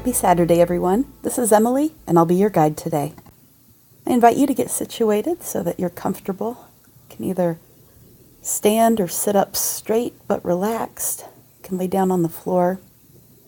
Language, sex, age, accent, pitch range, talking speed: English, female, 40-59, American, 160-200 Hz, 175 wpm